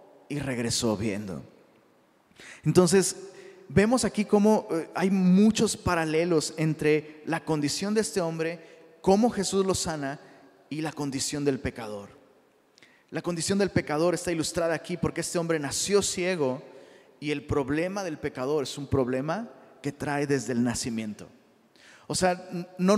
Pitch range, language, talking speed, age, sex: 145-190 Hz, Spanish, 140 wpm, 30-49, male